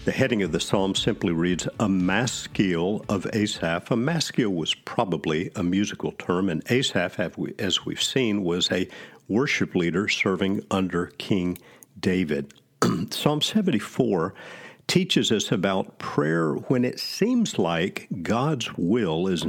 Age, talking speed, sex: 50-69, 135 wpm, male